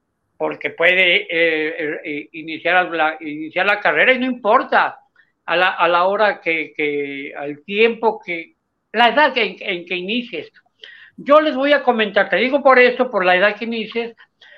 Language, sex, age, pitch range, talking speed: Spanish, male, 60-79, 175-235 Hz, 175 wpm